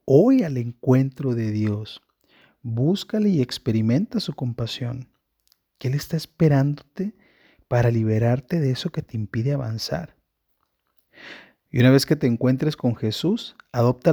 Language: Spanish